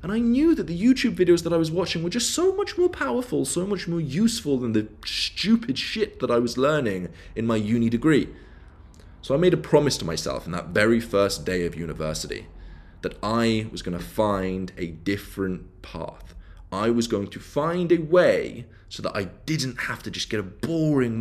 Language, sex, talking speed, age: English, male, 205 wpm, 20-39